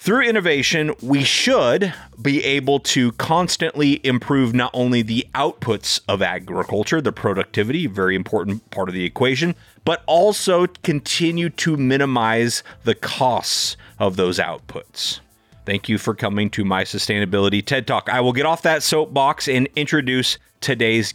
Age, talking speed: 30-49, 145 wpm